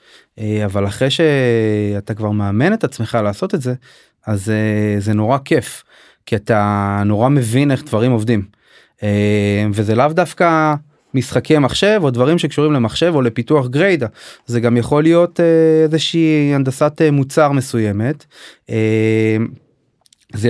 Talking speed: 125 wpm